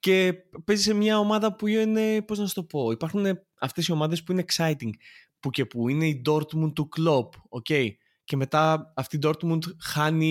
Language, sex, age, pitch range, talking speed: Greek, male, 20-39, 120-160 Hz, 190 wpm